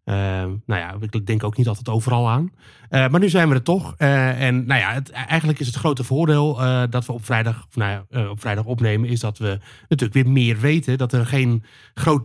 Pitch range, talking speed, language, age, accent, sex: 110-130 Hz, 220 wpm, Dutch, 30-49, Dutch, male